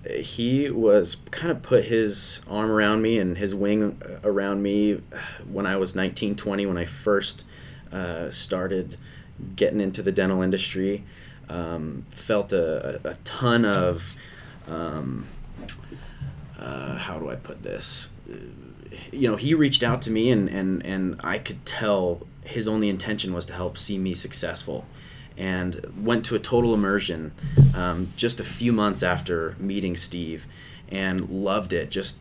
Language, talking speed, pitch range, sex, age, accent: English, 155 wpm, 90-105 Hz, male, 30-49, American